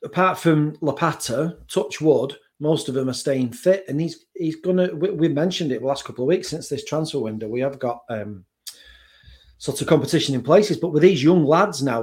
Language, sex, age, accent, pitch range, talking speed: English, male, 40-59, British, 125-170 Hz, 215 wpm